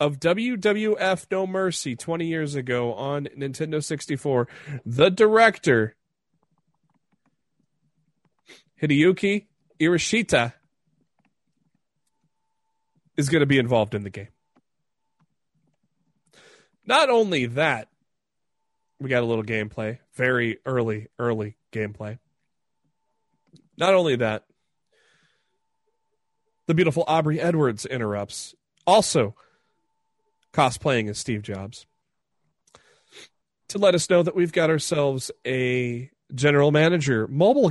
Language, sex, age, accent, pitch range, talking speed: English, male, 30-49, American, 115-175 Hz, 95 wpm